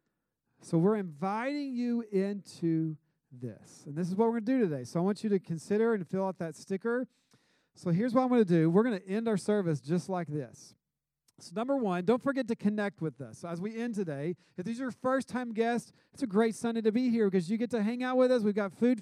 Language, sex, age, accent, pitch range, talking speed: English, male, 40-59, American, 160-215 Hz, 250 wpm